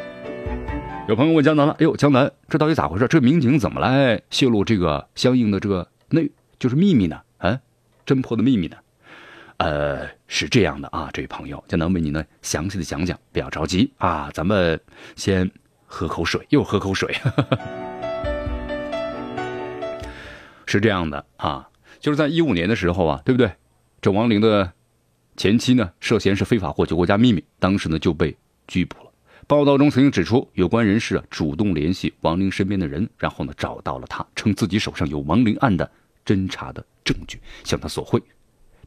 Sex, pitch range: male, 90-140 Hz